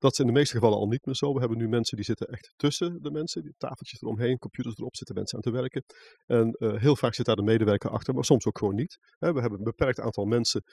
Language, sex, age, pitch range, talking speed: Dutch, male, 40-59, 115-145 Hz, 275 wpm